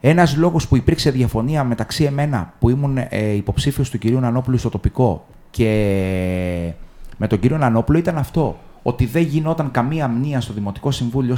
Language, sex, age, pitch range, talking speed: Greek, male, 30-49, 105-160 Hz, 160 wpm